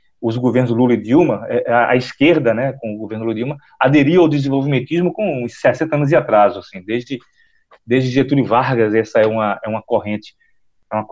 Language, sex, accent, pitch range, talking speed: Portuguese, male, Brazilian, 110-140 Hz, 195 wpm